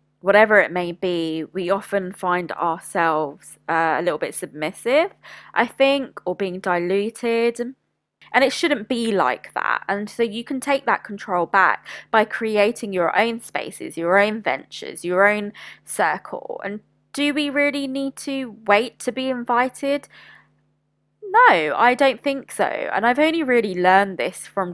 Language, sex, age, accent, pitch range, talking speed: English, female, 20-39, British, 180-230 Hz, 160 wpm